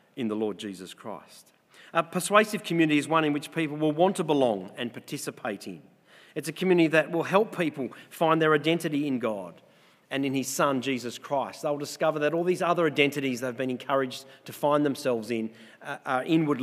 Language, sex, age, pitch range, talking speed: English, male, 40-59, 130-160 Hz, 195 wpm